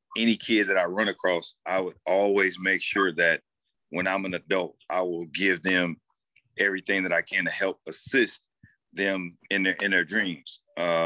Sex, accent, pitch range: male, American, 85-100 Hz